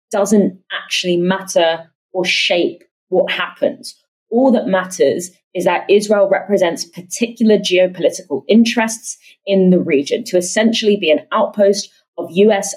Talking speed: 125 wpm